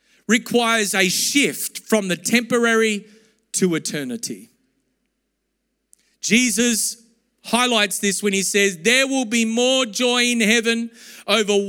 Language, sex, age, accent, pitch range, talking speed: English, male, 40-59, Australian, 205-240 Hz, 115 wpm